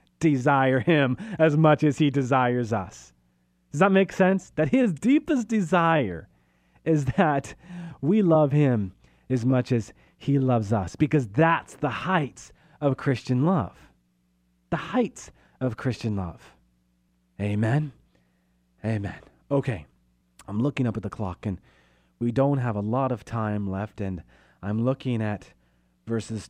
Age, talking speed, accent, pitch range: 30-49, 140 wpm, American, 95-135 Hz